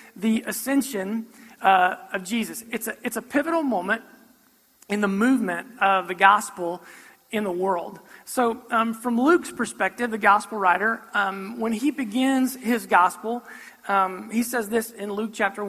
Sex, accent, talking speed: male, American, 150 wpm